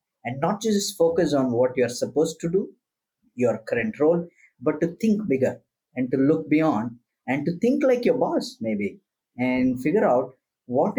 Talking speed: 175 wpm